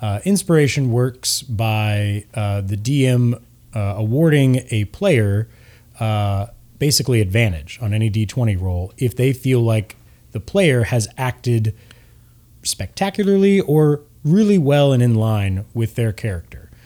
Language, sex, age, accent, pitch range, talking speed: English, male, 30-49, American, 105-130 Hz, 130 wpm